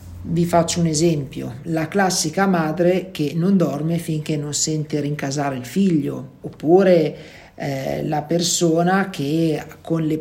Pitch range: 150-180 Hz